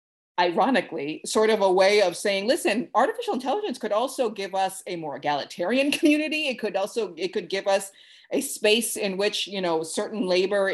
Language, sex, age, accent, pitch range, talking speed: English, female, 30-49, American, 165-215 Hz, 185 wpm